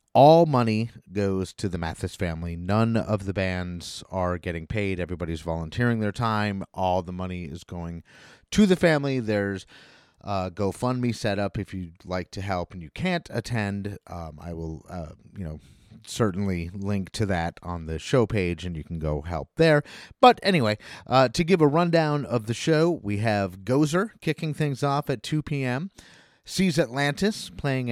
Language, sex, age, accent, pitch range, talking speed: English, male, 30-49, American, 95-140 Hz, 175 wpm